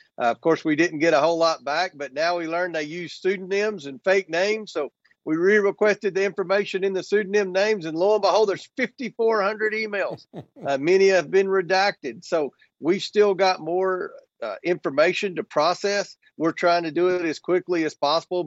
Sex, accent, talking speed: male, American, 190 wpm